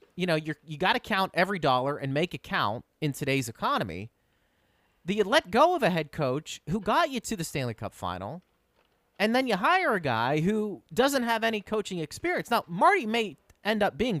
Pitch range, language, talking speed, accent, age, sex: 135-205 Hz, English, 210 wpm, American, 30-49, male